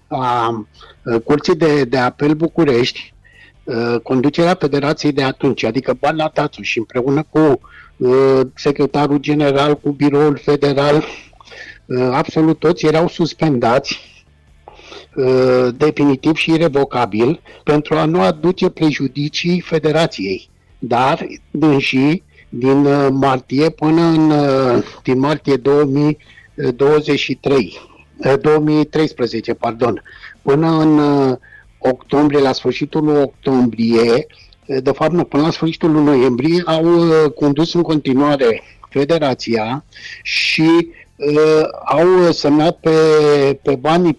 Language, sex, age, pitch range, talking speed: Romanian, male, 60-79, 140-165 Hz, 105 wpm